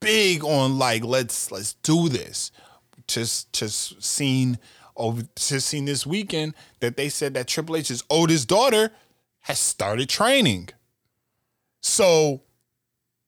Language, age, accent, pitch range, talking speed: English, 20-39, American, 115-145 Hz, 115 wpm